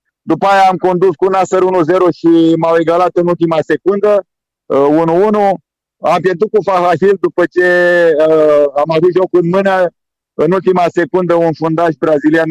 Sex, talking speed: male, 150 wpm